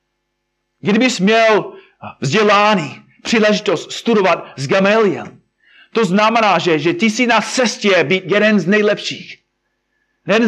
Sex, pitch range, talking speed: male, 170-220 Hz, 115 wpm